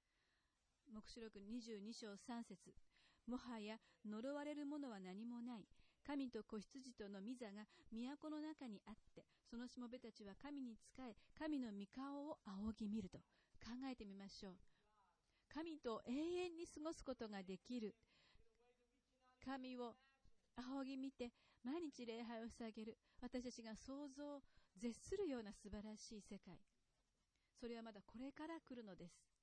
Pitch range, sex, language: 205-255 Hz, female, English